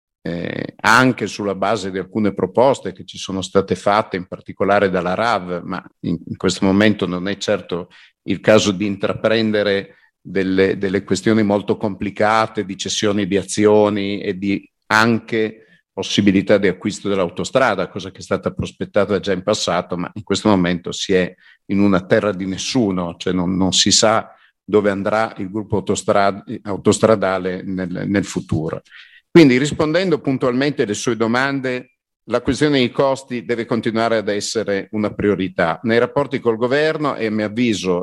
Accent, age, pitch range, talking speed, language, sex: native, 50-69, 95-110 Hz, 155 wpm, Italian, male